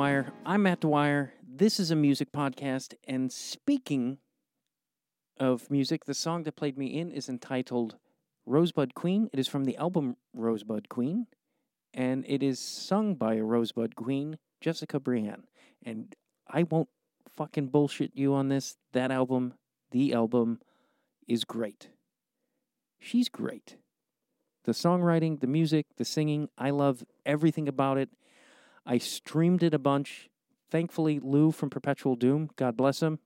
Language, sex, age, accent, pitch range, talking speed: English, male, 40-59, American, 130-165 Hz, 145 wpm